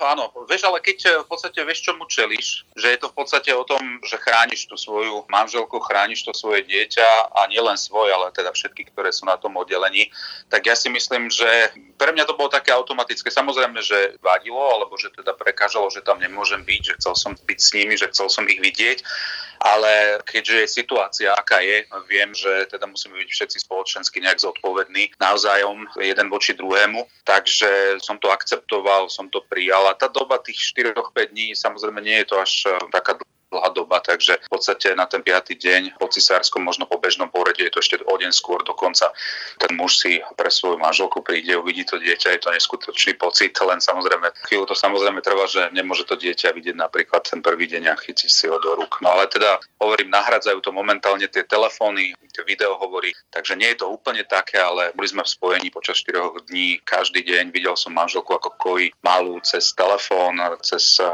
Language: Slovak